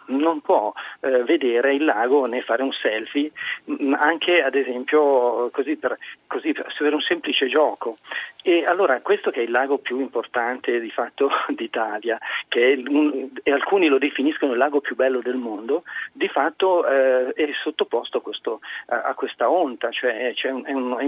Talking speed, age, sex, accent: 175 wpm, 40-59, male, native